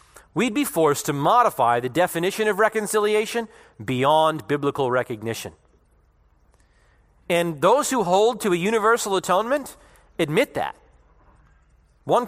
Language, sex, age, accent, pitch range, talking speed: English, male, 40-59, American, 145-220 Hz, 110 wpm